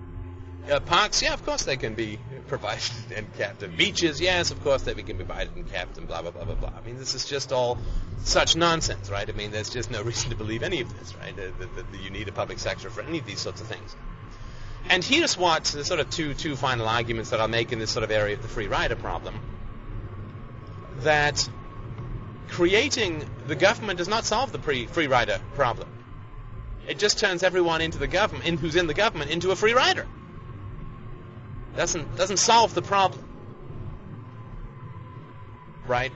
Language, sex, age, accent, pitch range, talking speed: English, male, 30-49, American, 110-155 Hz, 200 wpm